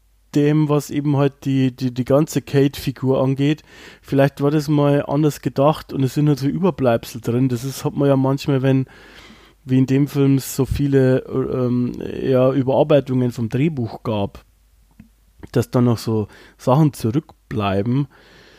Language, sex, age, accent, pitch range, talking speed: German, male, 20-39, German, 125-150 Hz, 155 wpm